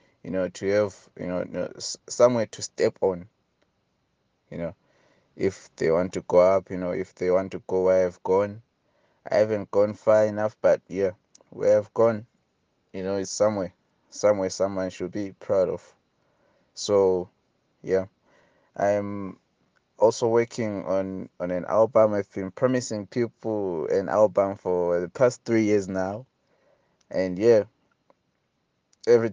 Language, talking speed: English, 150 wpm